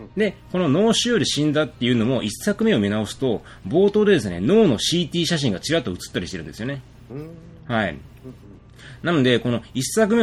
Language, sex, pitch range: Japanese, male, 105-155 Hz